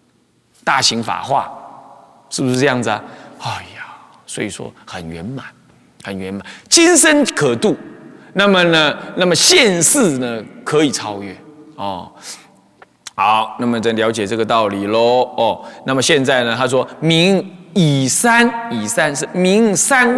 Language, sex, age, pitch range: Chinese, male, 30-49, 120-195 Hz